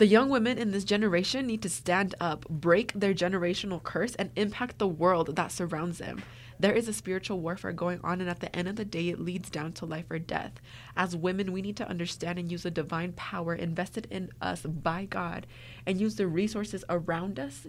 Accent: American